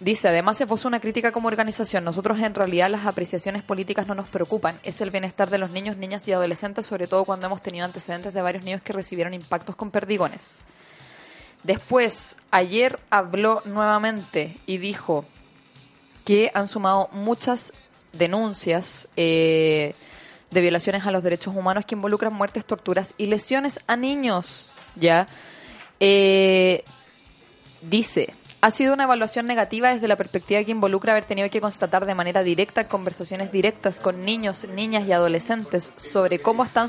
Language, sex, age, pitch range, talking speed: Spanish, female, 20-39, 180-220 Hz, 155 wpm